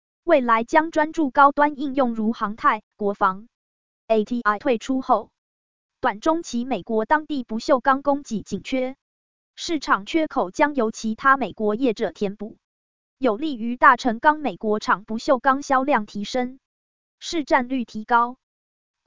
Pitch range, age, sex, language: 220-285 Hz, 20-39, female, Chinese